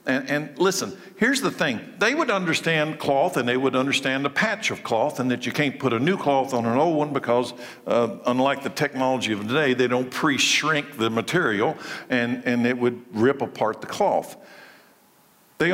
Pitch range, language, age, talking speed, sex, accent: 125-155 Hz, English, 60-79, 200 wpm, male, American